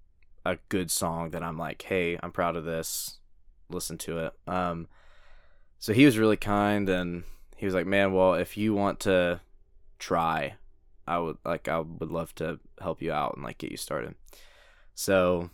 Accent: American